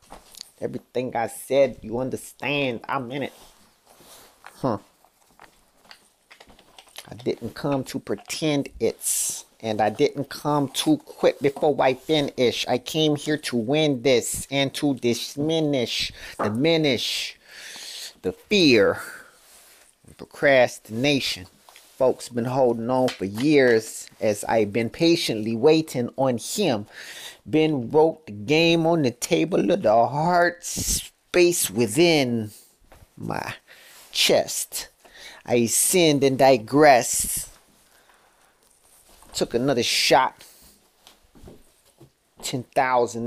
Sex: male